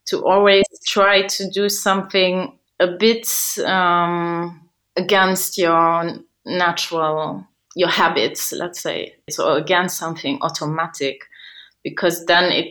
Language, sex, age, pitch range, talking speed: English, female, 20-39, 155-190 Hz, 110 wpm